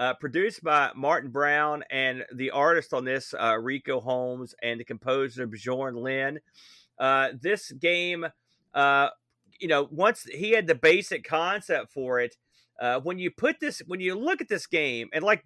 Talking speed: 170 wpm